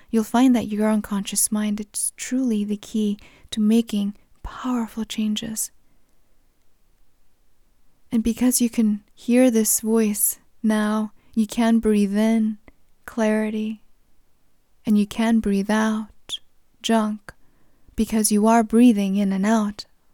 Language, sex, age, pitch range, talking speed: English, female, 20-39, 210-225 Hz, 120 wpm